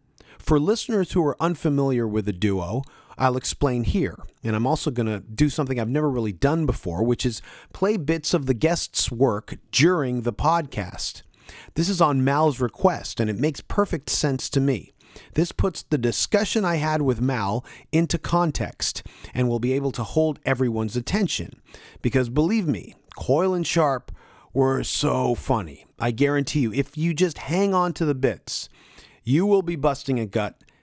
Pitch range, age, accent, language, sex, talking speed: 120-165 Hz, 40-59, American, English, male, 175 wpm